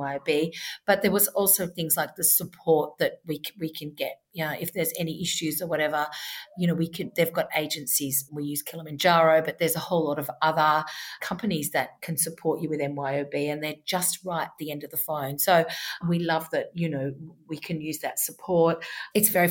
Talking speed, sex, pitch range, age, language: 210 wpm, female, 150-175 Hz, 50-69, English